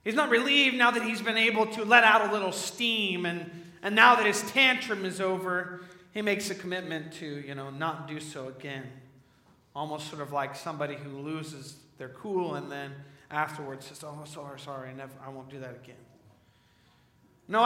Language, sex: English, male